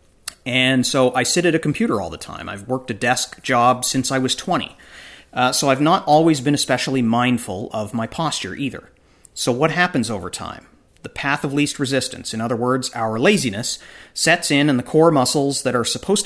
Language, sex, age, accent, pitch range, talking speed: English, male, 40-59, American, 115-145 Hz, 205 wpm